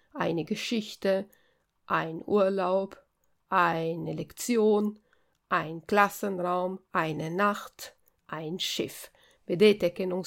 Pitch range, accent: 180-225 Hz, native